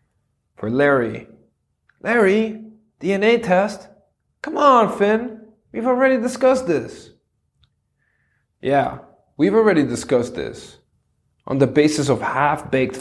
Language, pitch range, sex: Dutch, 120-195 Hz, male